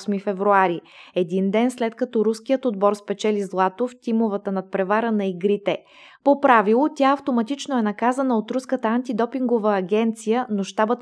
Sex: female